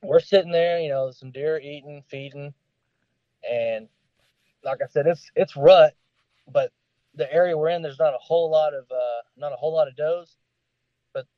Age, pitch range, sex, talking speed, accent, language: 20-39, 125-150 Hz, male, 190 wpm, American, English